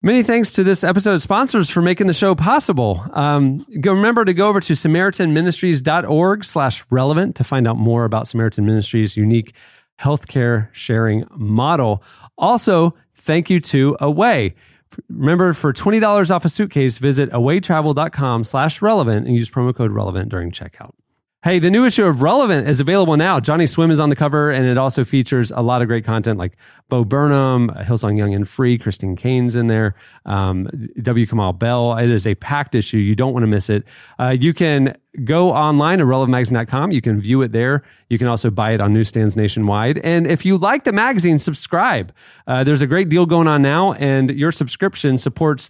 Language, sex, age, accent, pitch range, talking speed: English, male, 30-49, American, 115-170 Hz, 185 wpm